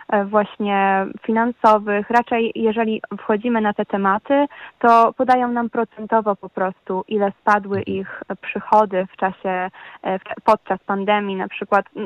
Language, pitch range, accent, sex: Polish, 195-230 Hz, native, female